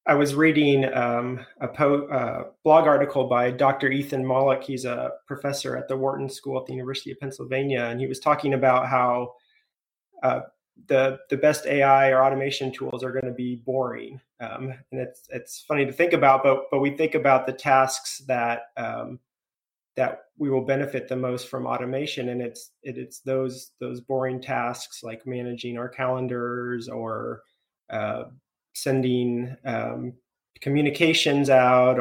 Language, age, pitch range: English, 30-49, 125-140 Hz